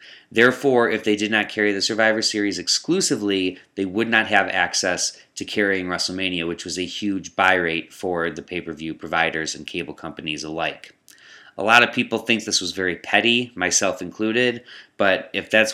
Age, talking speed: 30-49, 175 wpm